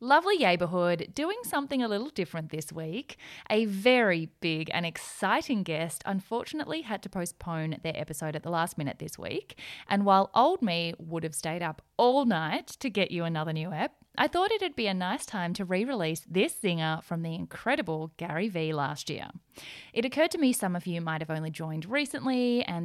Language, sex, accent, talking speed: English, female, Australian, 195 wpm